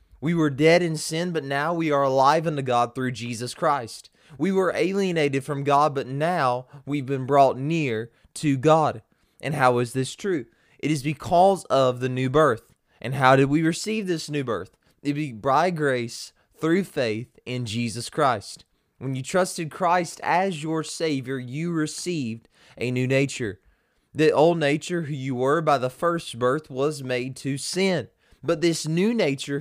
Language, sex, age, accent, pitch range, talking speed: English, male, 20-39, American, 130-165 Hz, 180 wpm